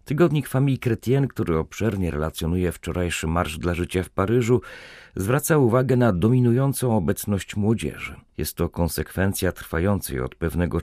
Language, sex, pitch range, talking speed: Polish, male, 85-115 Hz, 135 wpm